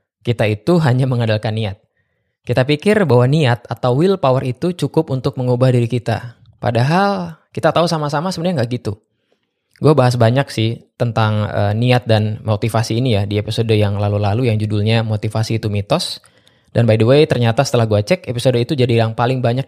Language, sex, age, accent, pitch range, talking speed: Indonesian, male, 20-39, native, 110-140 Hz, 175 wpm